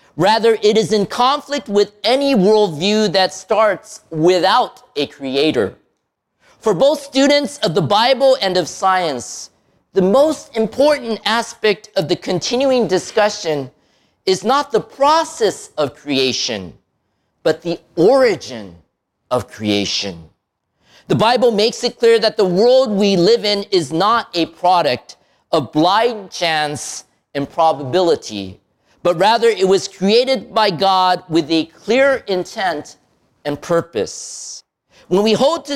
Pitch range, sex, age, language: 165-230 Hz, male, 40-59, Japanese